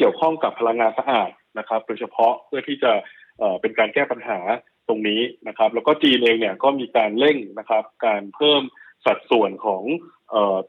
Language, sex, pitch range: Thai, male, 115-145 Hz